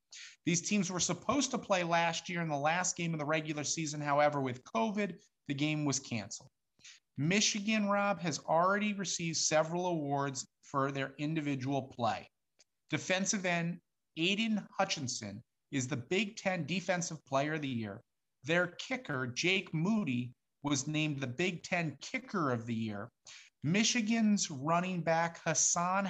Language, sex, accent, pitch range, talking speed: English, male, American, 130-180 Hz, 145 wpm